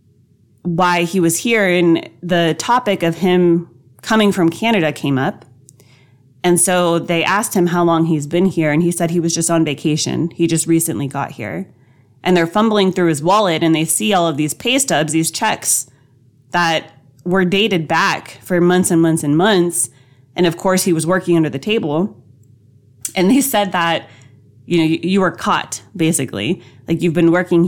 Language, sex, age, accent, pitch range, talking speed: English, female, 20-39, American, 130-175 Hz, 185 wpm